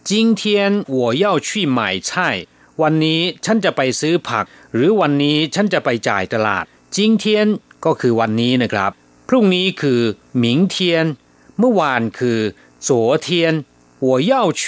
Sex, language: male, Thai